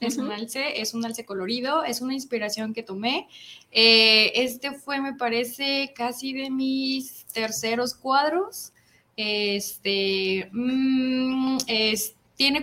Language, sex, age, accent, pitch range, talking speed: Spanish, female, 20-39, Mexican, 205-260 Hz, 125 wpm